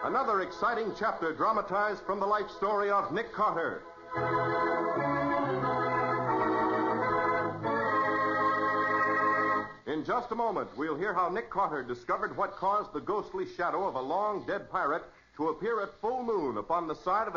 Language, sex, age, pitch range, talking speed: English, male, 60-79, 115-195 Hz, 135 wpm